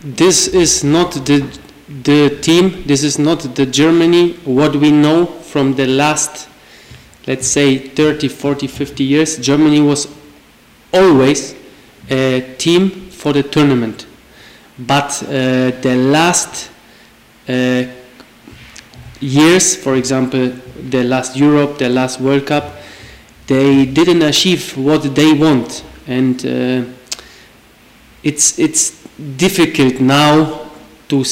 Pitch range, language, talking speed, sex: 135-155 Hz, Greek, 115 wpm, male